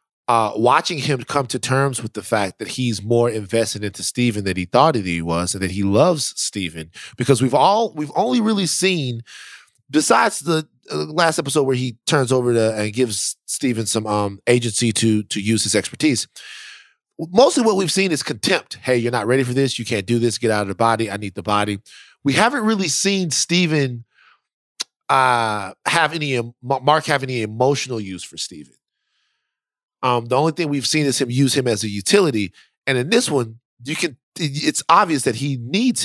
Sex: male